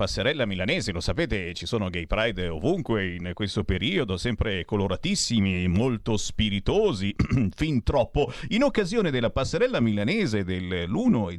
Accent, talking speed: native, 135 wpm